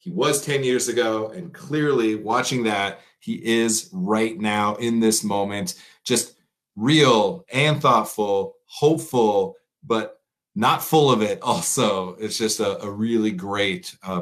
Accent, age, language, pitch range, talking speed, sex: American, 30-49, English, 105-165 Hz, 145 wpm, male